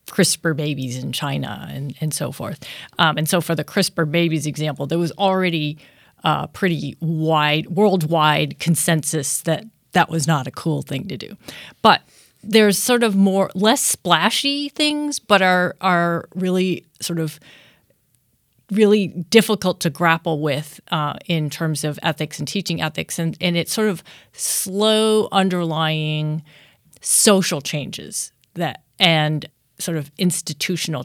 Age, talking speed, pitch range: 30-49, 145 wpm, 150-190 Hz